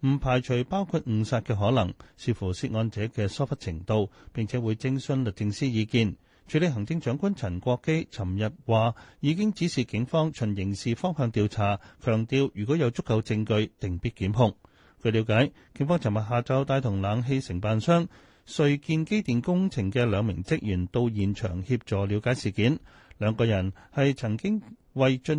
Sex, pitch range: male, 105-135 Hz